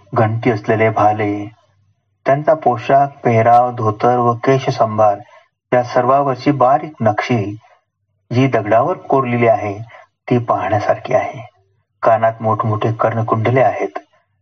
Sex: male